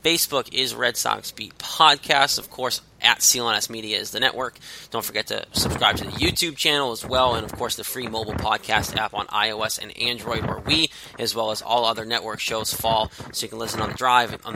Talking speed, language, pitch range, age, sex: 225 wpm, English, 110-130 Hz, 20-39, male